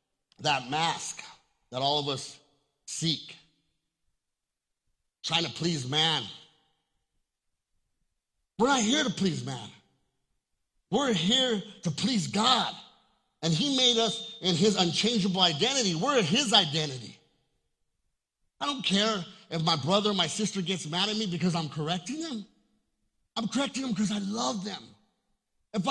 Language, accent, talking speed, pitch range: English, American, 135 wpm, 180-245 Hz